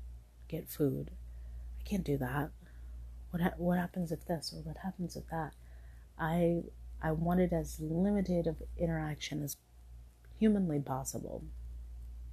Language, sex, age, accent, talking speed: English, female, 30-49, American, 130 wpm